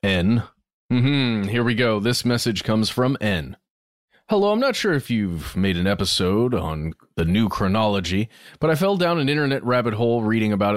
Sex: male